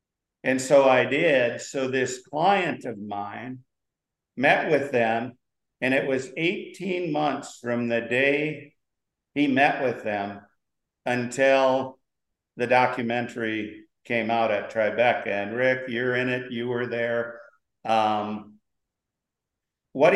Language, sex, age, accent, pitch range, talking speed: English, male, 50-69, American, 115-135 Hz, 120 wpm